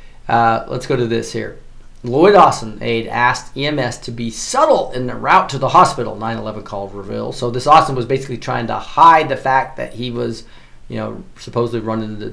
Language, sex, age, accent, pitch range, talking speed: English, male, 40-59, American, 110-130 Hz, 200 wpm